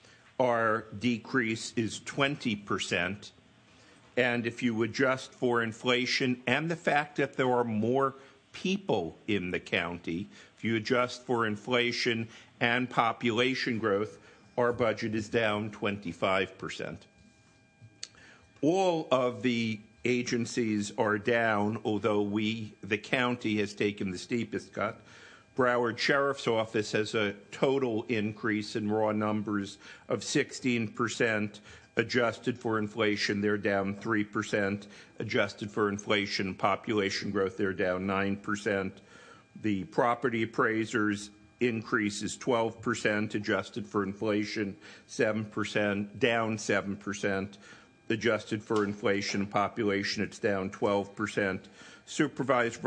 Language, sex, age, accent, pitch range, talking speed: English, male, 50-69, American, 105-120 Hz, 115 wpm